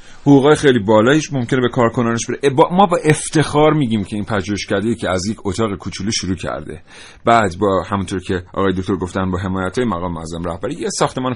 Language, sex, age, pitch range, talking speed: Persian, male, 40-59, 90-130 Hz, 190 wpm